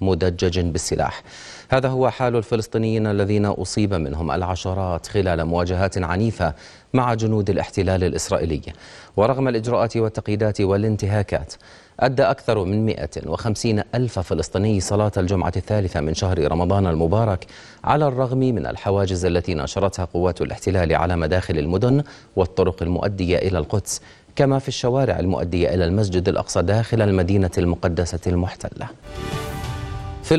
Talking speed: 120 wpm